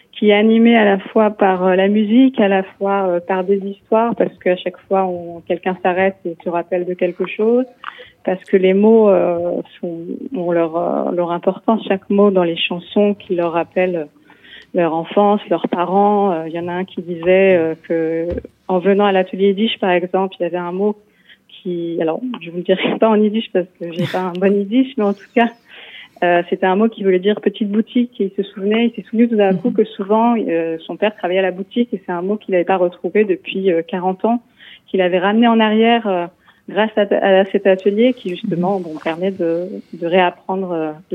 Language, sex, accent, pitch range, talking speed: French, female, French, 175-210 Hz, 220 wpm